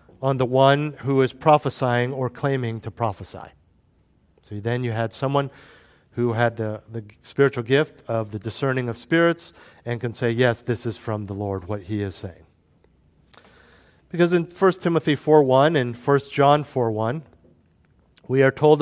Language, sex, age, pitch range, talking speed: English, male, 40-59, 120-160 Hz, 165 wpm